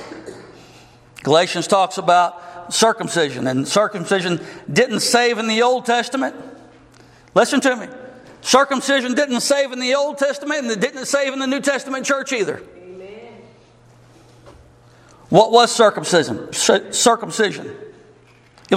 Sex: male